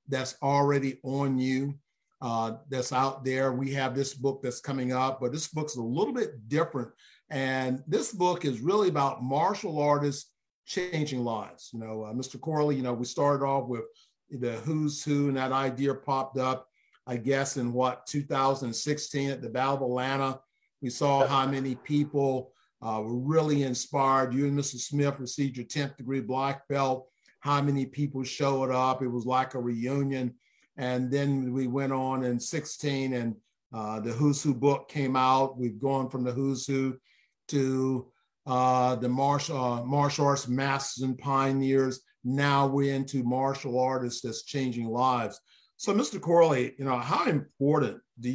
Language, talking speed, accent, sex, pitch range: English, 170 wpm, American, male, 125-140 Hz